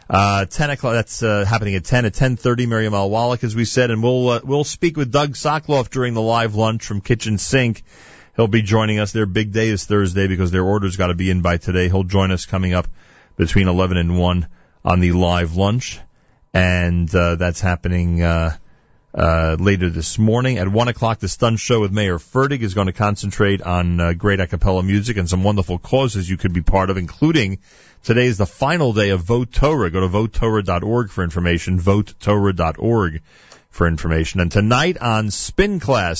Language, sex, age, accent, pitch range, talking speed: English, male, 40-59, American, 90-125 Hz, 200 wpm